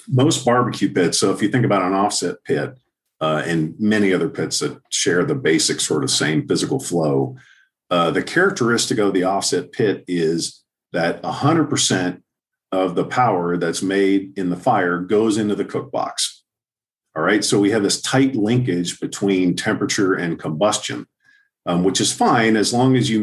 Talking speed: 175 wpm